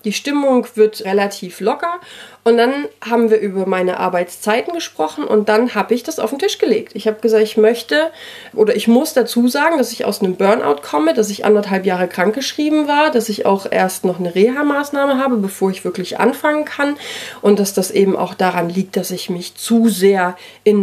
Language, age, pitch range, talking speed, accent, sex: German, 30-49, 195-255 Hz, 200 wpm, German, female